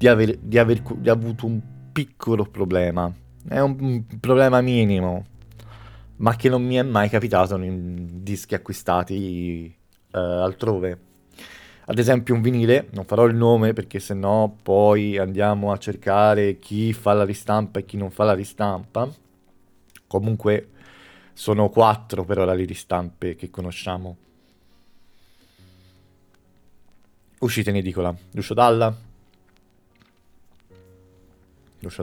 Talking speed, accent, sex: 125 wpm, native, male